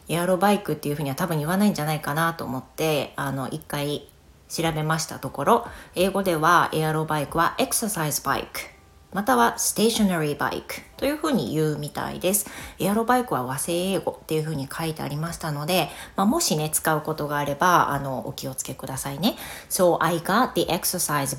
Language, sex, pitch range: Japanese, female, 150-185 Hz